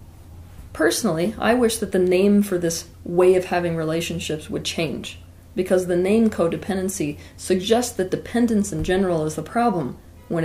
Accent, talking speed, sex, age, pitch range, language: American, 155 wpm, female, 40-59, 140-190 Hz, English